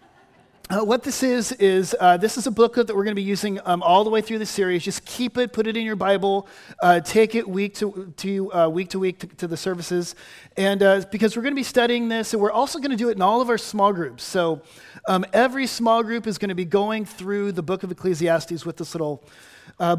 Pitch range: 175-220 Hz